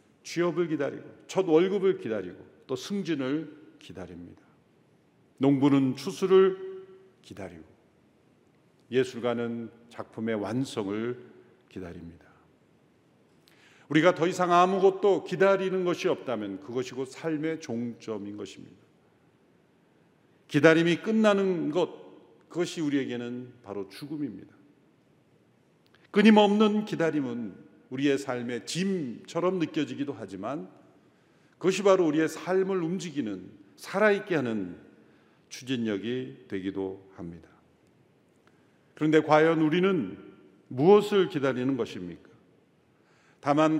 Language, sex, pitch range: Korean, male, 120-180 Hz